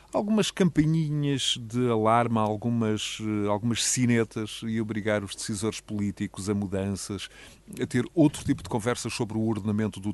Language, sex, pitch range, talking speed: Portuguese, male, 105-120 Hz, 140 wpm